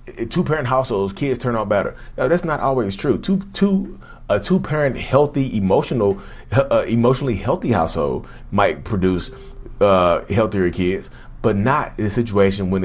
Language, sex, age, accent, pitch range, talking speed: English, male, 30-49, American, 90-120 Hz, 160 wpm